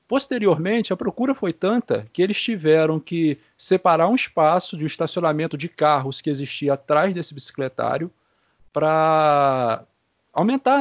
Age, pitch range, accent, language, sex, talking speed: 40-59, 140-190 Hz, Brazilian, Portuguese, male, 130 wpm